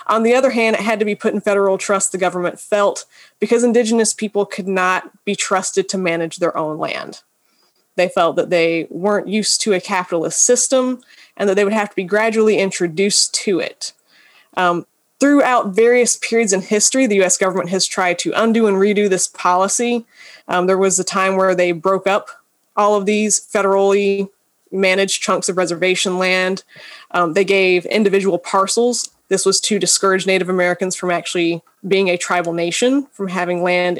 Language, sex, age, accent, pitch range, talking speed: English, female, 20-39, American, 185-215 Hz, 180 wpm